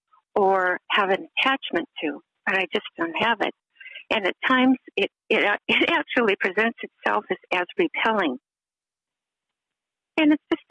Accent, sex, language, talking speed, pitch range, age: American, female, English, 145 wpm, 200-270 Hz, 60-79